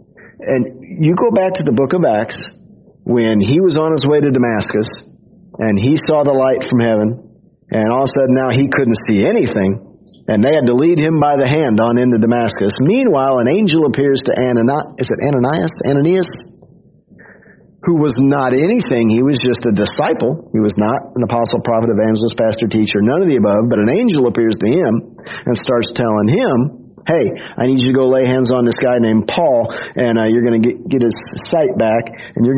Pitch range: 115-160 Hz